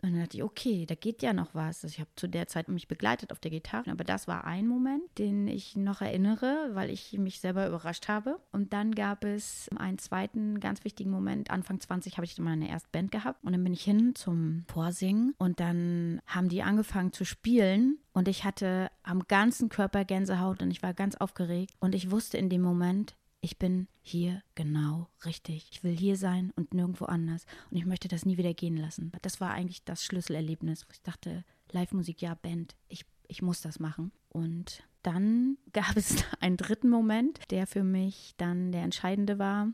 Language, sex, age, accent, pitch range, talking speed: German, female, 30-49, German, 175-210 Hz, 200 wpm